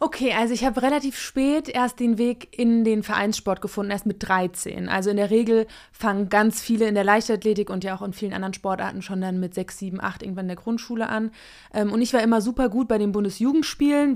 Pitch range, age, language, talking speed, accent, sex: 195-235 Hz, 20-39, German, 225 wpm, German, female